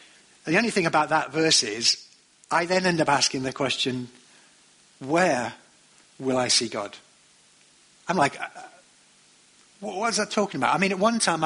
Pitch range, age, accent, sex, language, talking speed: 120-160 Hz, 50-69, British, male, English, 160 wpm